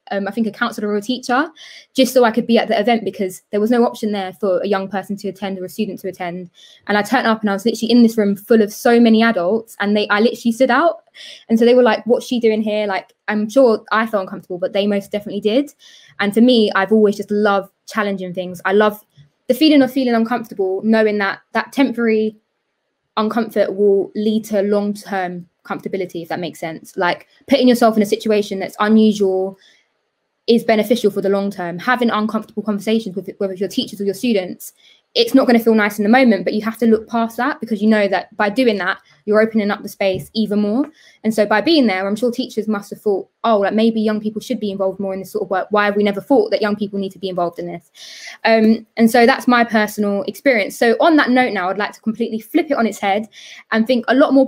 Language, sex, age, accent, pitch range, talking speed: English, female, 20-39, British, 200-235 Hz, 245 wpm